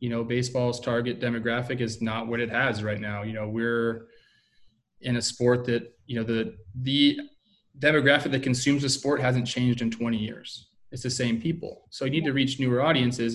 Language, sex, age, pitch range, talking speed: English, male, 20-39, 115-135 Hz, 200 wpm